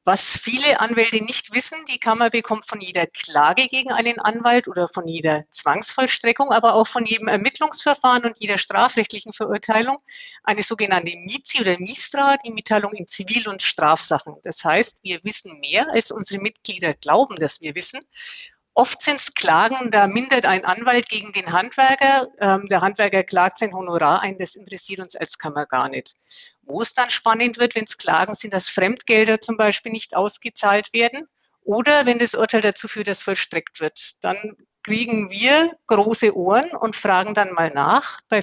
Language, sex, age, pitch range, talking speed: German, female, 50-69, 195-245 Hz, 175 wpm